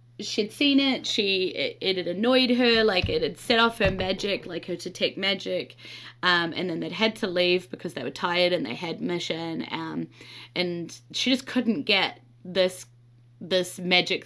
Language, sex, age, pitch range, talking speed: English, female, 20-39, 165-215 Hz, 190 wpm